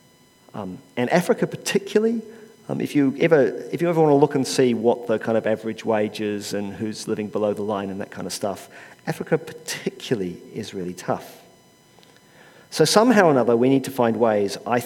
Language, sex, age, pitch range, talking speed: English, male, 40-59, 120-205 Hz, 200 wpm